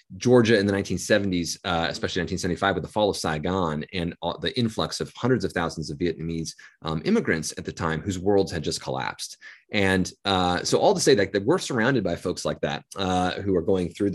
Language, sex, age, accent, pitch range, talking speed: English, male, 30-49, American, 90-115 Hz, 210 wpm